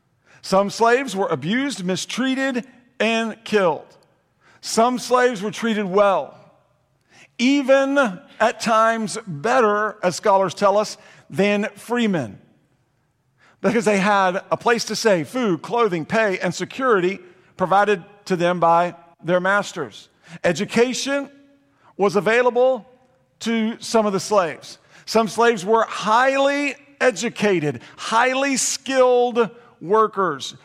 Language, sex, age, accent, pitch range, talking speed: English, male, 50-69, American, 175-235 Hz, 110 wpm